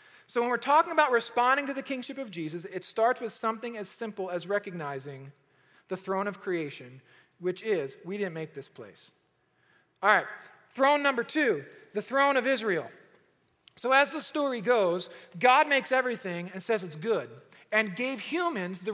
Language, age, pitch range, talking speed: English, 40-59, 190-265 Hz, 175 wpm